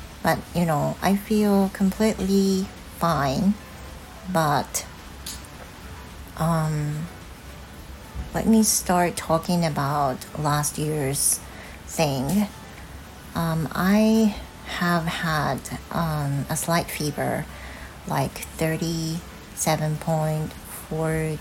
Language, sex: Japanese, female